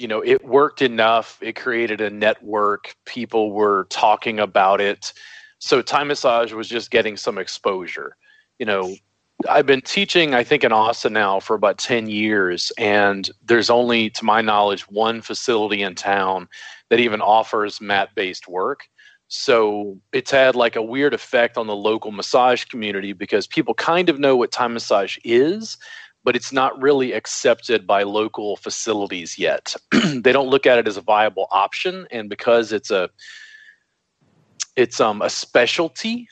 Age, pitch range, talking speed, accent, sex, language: 30-49, 105-175 Hz, 165 wpm, American, male, English